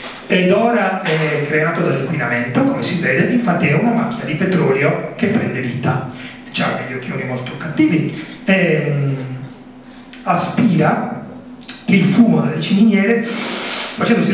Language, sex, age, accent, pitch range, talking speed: Italian, male, 40-59, native, 155-205 Hz, 125 wpm